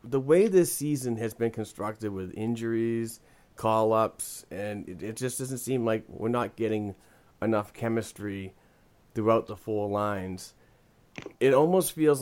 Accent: American